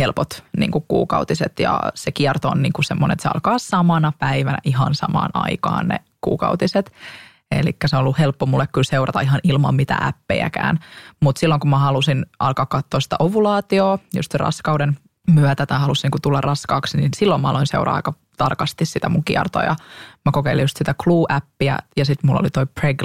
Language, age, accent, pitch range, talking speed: Finnish, 20-39, native, 140-165 Hz, 180 wpm